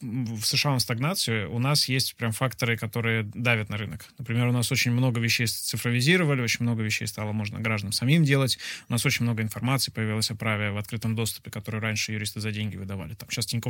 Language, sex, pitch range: Russian, male, 110-130 Hz